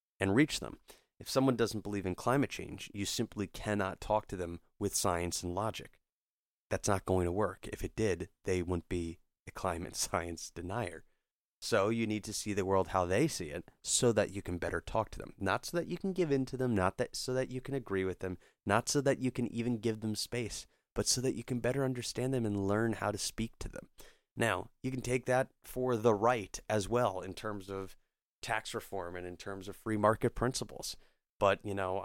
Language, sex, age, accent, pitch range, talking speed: English, male, 30-49, American, 90-120 Hz, 225 wpm